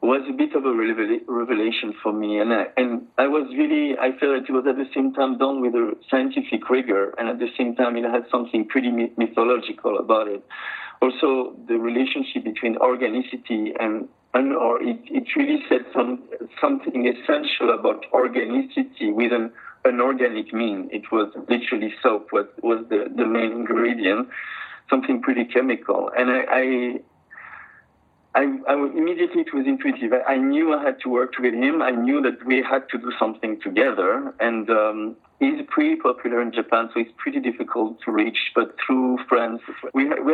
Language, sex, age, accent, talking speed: English, male, 50-69, French, 180 wpm